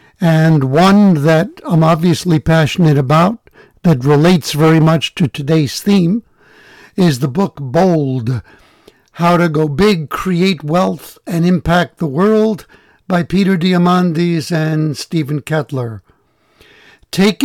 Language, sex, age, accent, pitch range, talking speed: English, male, 60-79, American, 155-195 Hz, 120 wpm